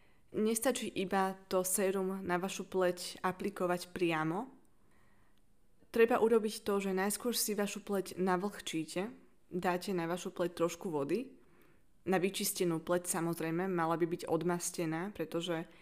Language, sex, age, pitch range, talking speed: Slovak, female, 20-39, 175-190 Hz, 125 wpm